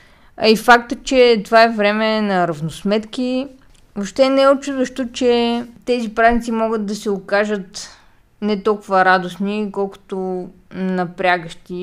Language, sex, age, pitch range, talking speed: Bulgarian, female, 20-39, 185-220 Hz, 125 wpm